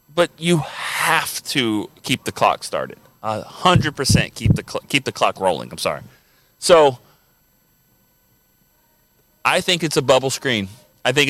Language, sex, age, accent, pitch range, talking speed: English, male, 30-49, American, 125-165 Hz, 150 wpm